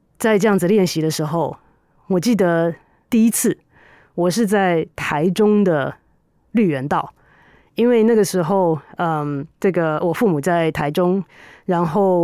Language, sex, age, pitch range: Chinese, female, 30-49, 170-230 Hz